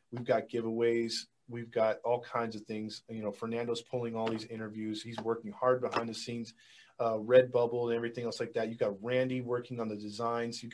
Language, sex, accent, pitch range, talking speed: English, male, American, 115-135 Hz, 205 wpm